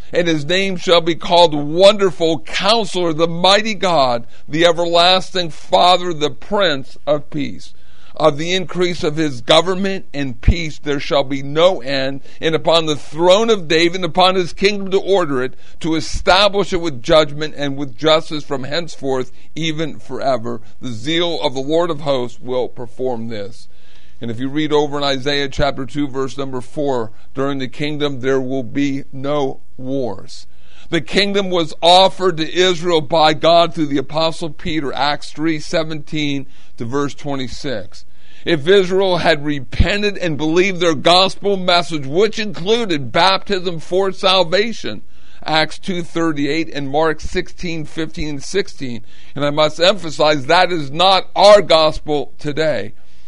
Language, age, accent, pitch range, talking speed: English, 50-69, American, 140-175 Hz, 155 wpm